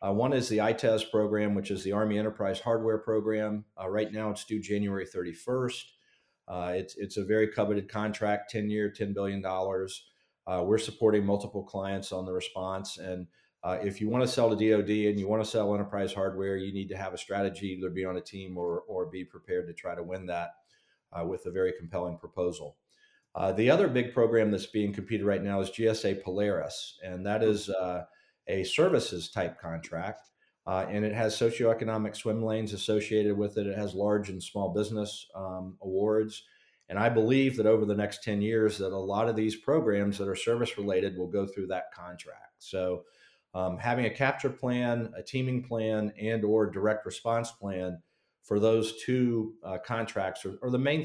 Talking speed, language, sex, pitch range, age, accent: 195 wpm, English, male, 95-110 Hz, 40-59, American